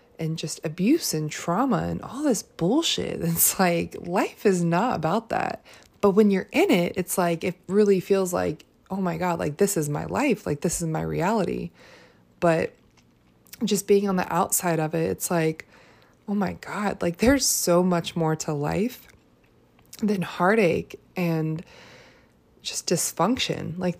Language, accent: English, American